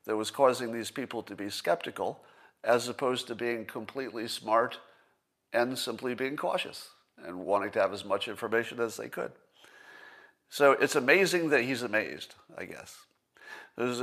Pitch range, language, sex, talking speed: 110-135 Hz, English, male, 160 wpm